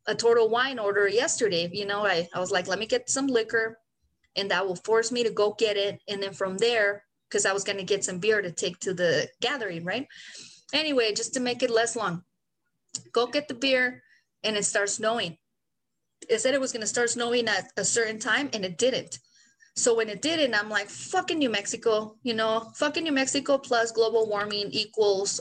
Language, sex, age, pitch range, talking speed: English, female, 30-49, 200-255 Hz, 215 wpm